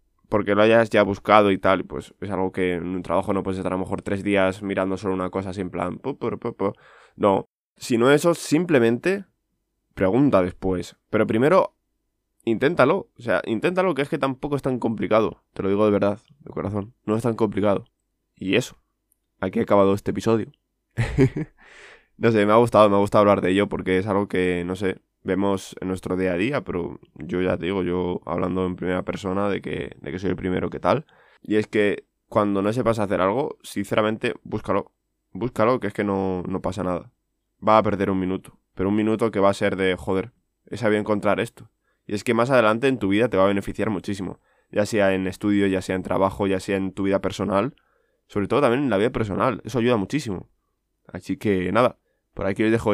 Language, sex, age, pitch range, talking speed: Spanish, male, 20-39, 95-110 Hz, 210 wpm